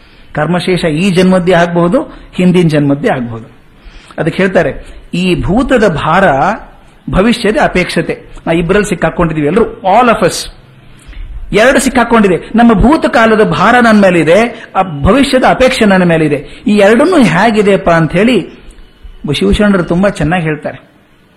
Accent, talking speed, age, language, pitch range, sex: native, 125 wpm, 50-69, Kannada, 165-235 Hz, male